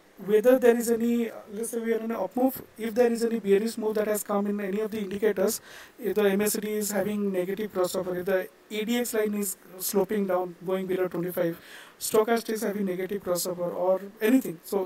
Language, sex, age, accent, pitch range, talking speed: Tamil, male, 50-69, native, 195-230 Hz, 220 wpm